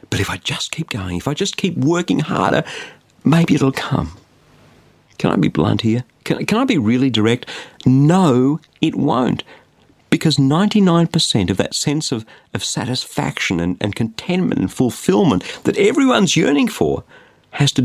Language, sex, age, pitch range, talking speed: English, male, 50-69, 100-145 Hz, 160 wpm